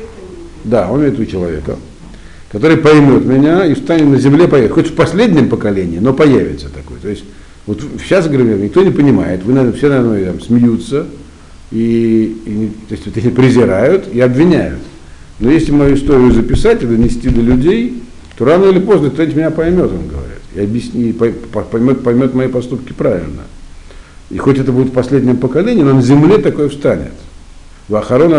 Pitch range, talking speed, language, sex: 90-130 Hz, 170 wpm, Russian, male